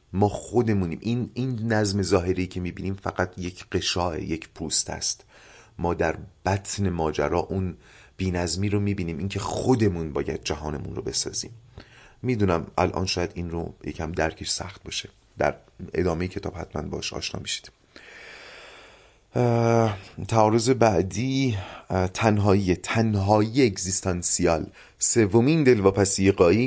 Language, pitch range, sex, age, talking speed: Persian, 85-105 Hz, male, 30-49, 120 wpm